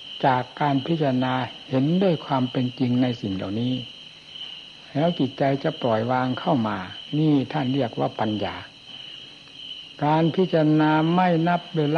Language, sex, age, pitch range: Thai, male, 60-79, 130-160 Hz